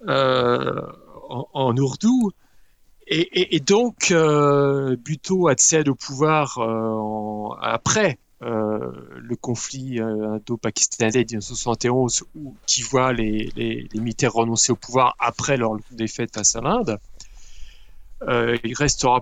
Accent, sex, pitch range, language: French, male, 110-140 Hz, French